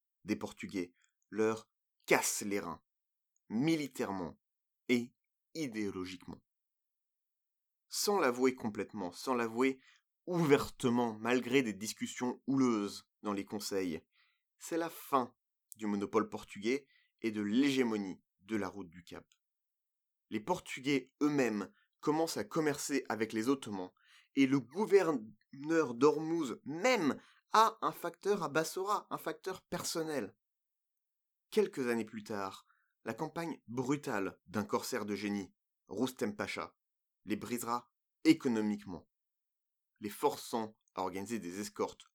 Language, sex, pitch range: French, male, 105-155 Hz